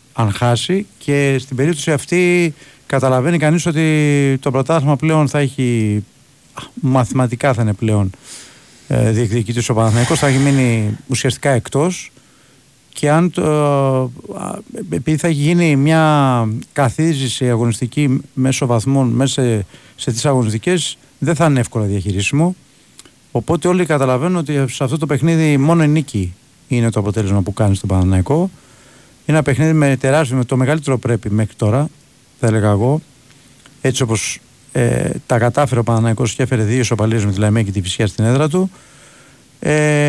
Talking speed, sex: 155 wpm, male